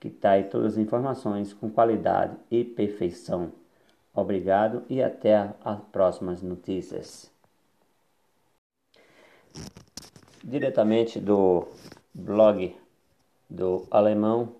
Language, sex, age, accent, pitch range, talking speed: Portuguese, male, 50-69, Brazilian, 95-115 Hz, 85 wpm